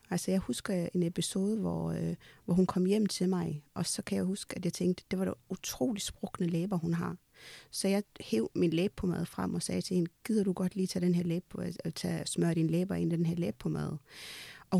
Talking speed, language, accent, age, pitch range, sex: 235 wpm, Danish, native, 30-49, 165-195 Hz, female